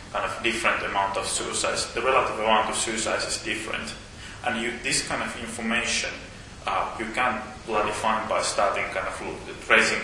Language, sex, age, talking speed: English, male, 30-49, 175 wpm